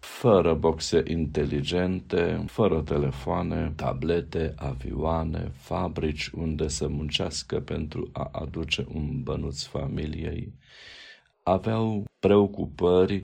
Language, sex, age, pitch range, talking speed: Romanian, male, 50-69, 70-85 Hz, 85 wpm